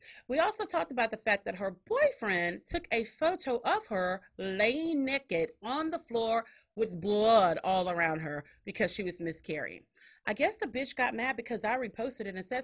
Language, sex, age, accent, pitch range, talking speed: English, female, 30-49, American, 175-290 Hz, 190 wpm